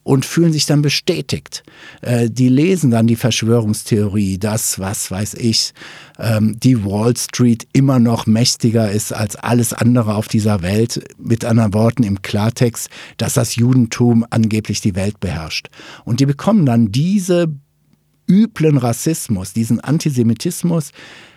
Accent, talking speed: German, 135 wpm